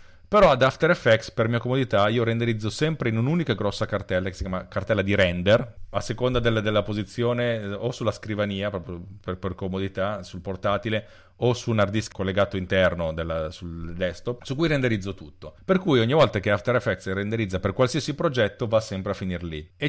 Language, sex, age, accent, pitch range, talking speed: Italian, male, 40-59, native, 95-120 Hz, 195 wpm